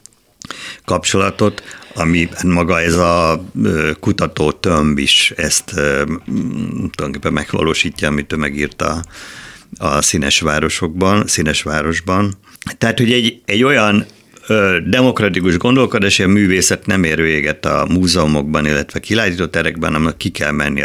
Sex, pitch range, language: male, 80-95 Hz, Hungarian